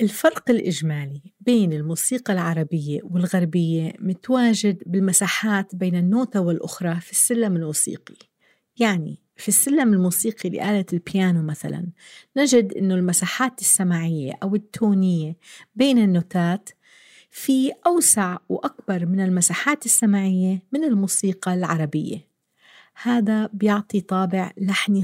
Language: English